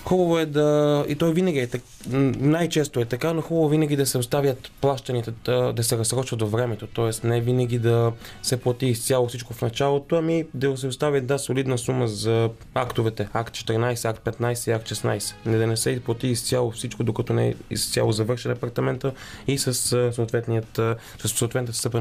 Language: Bulgarian